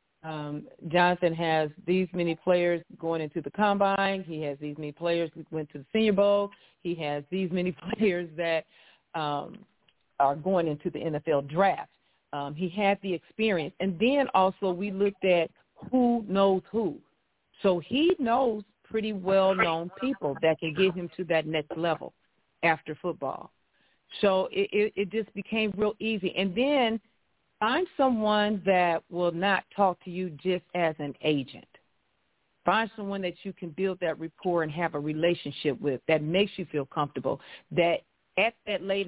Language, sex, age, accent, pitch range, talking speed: English, female, 40-59, American, 160-195 Hz, 165 wpm